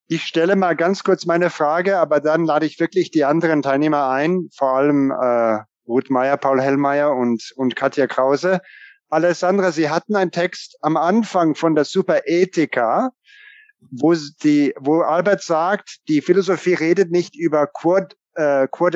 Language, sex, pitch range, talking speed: English, male, 145-180 Hz, 150 wpm